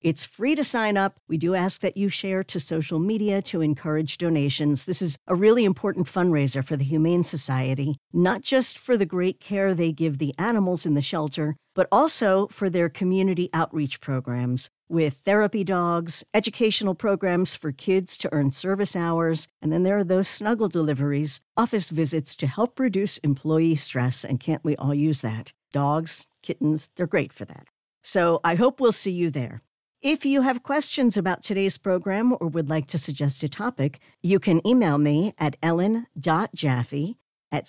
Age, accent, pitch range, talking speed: 60-79, American, 150-200 Hz, 180 wpm